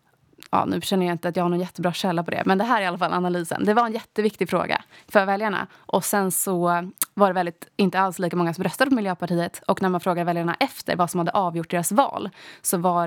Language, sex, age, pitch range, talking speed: Swedish, female, 20-39, 170-190 Hz, 255 wpm